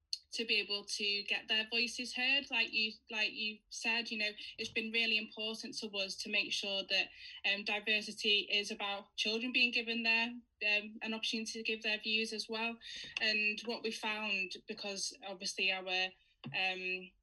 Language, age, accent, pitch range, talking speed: English, 10-29, British, 195-225 Hz, 175 wpm